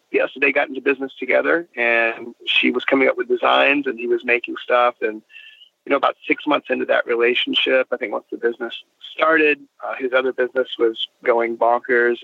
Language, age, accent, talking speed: English, 30-49, American, 190 wpm